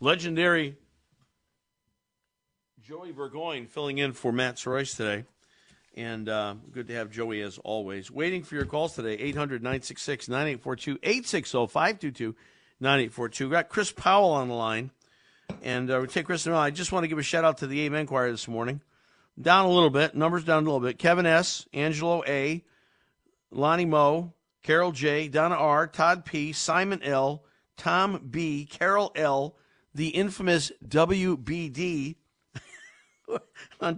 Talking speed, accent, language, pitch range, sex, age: 145 wpm, American, English, 130-170 Hz, male, 50-69